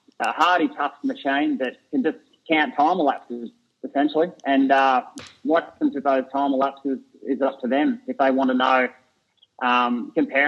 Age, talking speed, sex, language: 30-49, 180 wpm, male, English